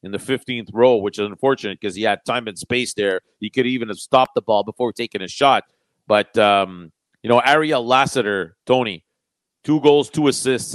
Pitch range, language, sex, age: 110-130 Hz, French, male, 40-59